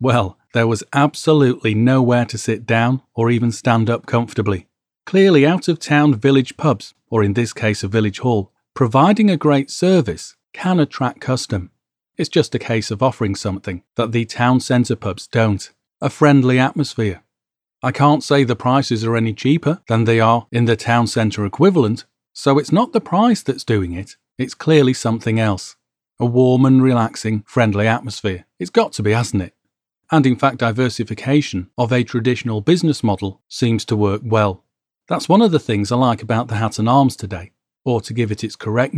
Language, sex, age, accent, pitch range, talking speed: English, male, 40-59, British, 110-135 Hz, 185 wpm